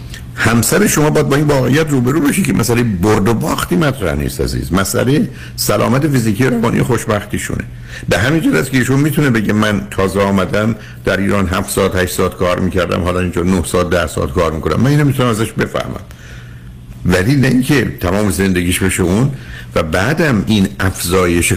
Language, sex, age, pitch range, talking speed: Persian, male, 60-79, 75-110 Hz, 175 wpm